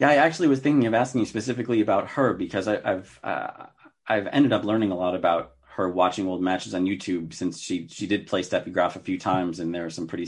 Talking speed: 250 wpm